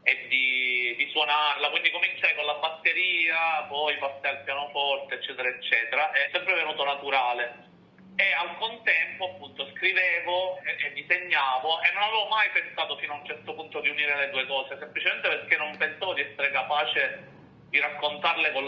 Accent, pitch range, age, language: native, 135-165 Hz, 40-59, Italian